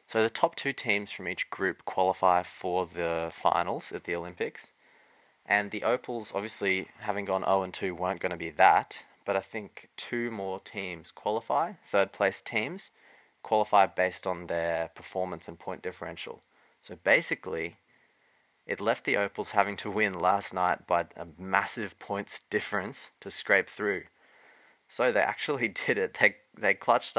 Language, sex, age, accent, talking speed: English, male, 20-39, Australian, 155 wpm